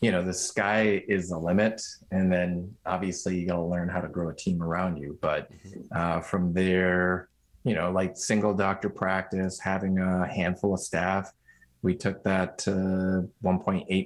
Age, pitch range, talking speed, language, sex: 30-49, 90-95 Hz, 175 wpm, English, male